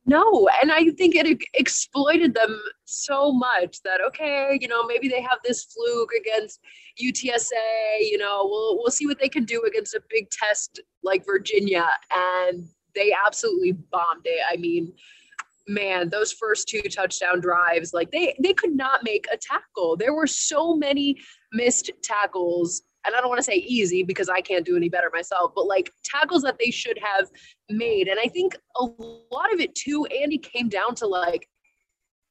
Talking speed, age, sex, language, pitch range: 180 wpm, 20-39, female, English, 195-310 Hz